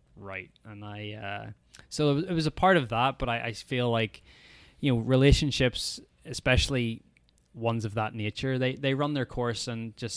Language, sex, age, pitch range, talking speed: English, male, 20-39, 105-120 Hz, 185 wpm